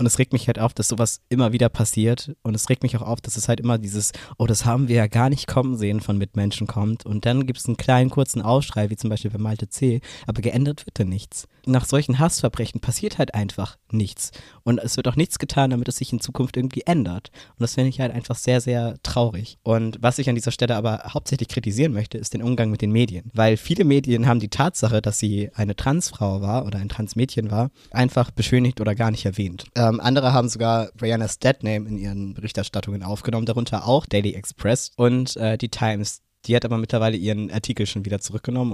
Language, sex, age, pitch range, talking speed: German, male, 20-39, 105-125 Hz, 225 wpm